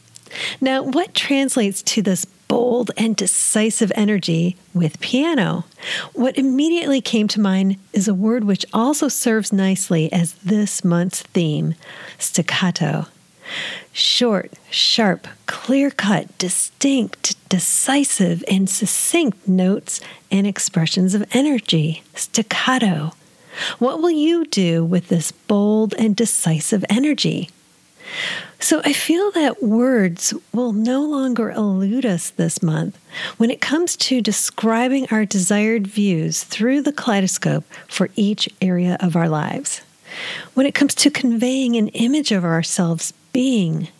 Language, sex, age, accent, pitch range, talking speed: English, female, 40-59, American, 180-250 Hz, 125 wpm